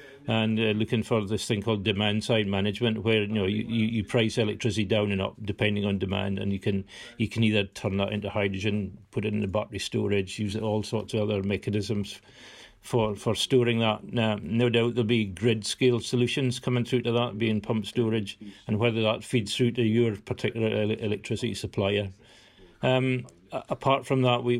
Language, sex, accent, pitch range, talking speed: English, male, British, 105-120 Hz, 200 wpm